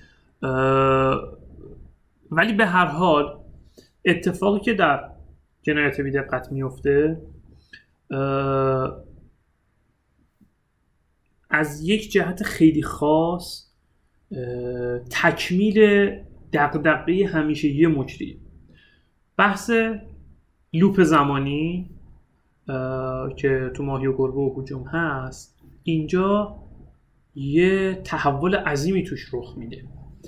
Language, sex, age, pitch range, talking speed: Persian, male, 30-49, 130-185 Hz, 85 wpm